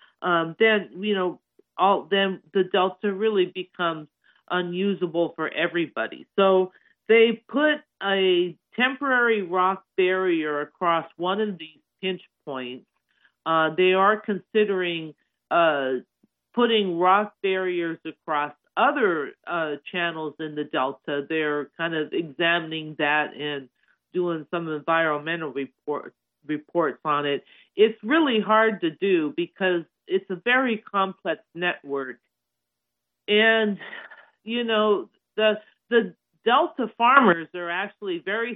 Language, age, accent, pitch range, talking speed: English, 40-59, American, 160-205 Hz, 115 wpm